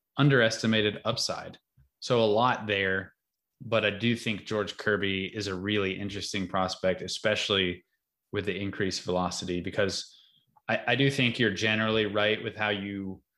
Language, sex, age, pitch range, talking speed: English, male, 20-39, 95-110 Hz, 150 wpm